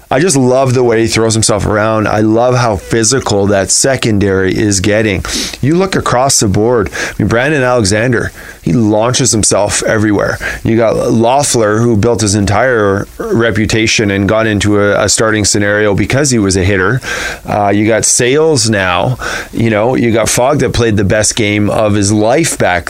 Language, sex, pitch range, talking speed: English, male, 105-125 Hz, 175 wpm